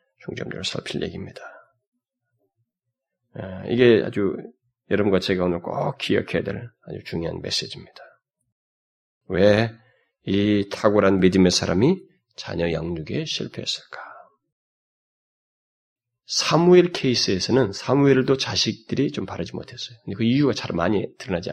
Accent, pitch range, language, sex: native, 100-150 Hz, Korean, male